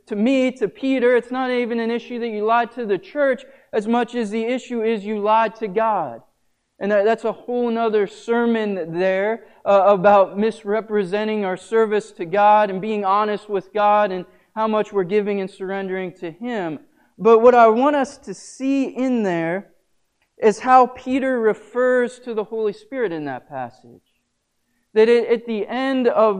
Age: 20-39